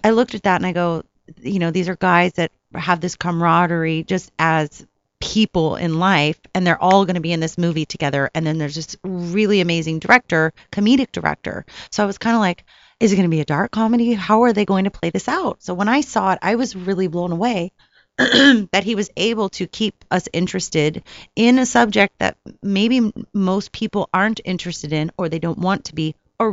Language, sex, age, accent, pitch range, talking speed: English, female, 30-49, American, 170-210 Hz, 220 wpm